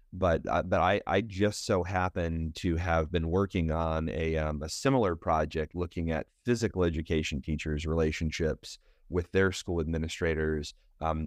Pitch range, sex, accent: 80-95 Hz, male, American